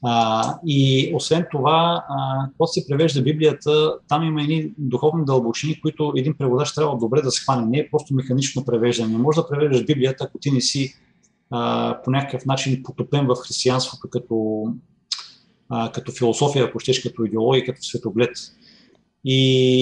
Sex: male